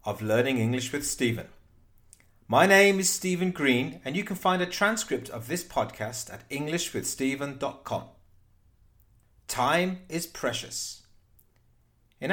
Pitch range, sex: 105-165 Hz, male